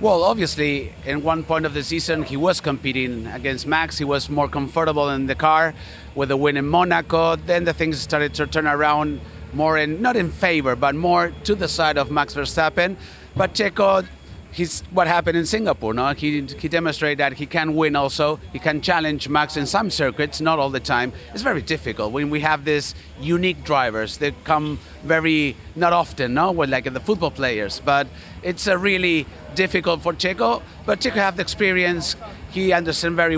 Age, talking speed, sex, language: 30-49, 185 wpm, male, English